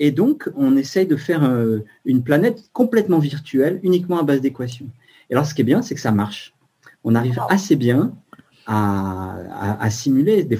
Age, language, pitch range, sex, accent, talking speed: 30-49, English, 110-145 Hz, male, French, 185 wpm